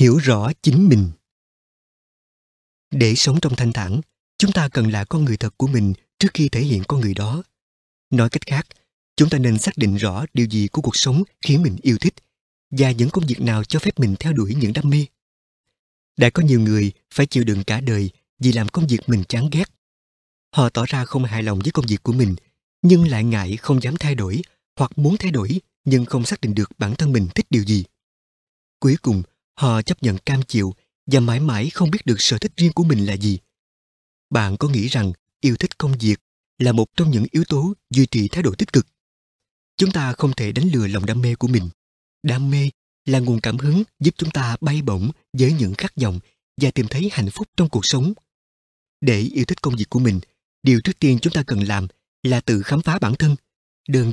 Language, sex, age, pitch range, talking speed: Vietnamese, male, 20-39, 110-150 Hz, 220 wpm